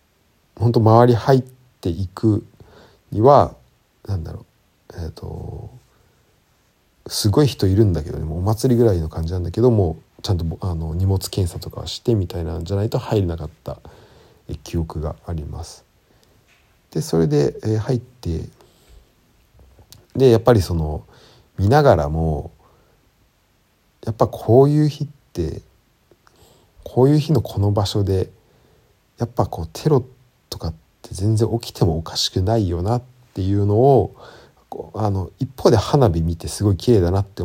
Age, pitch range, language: 50-69, 85-120 Hz, Japanese